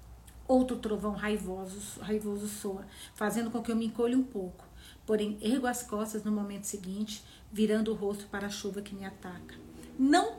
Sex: female